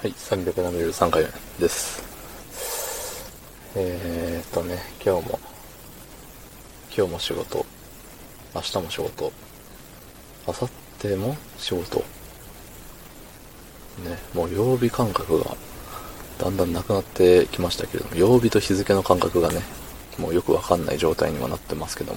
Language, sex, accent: Japanese, male, native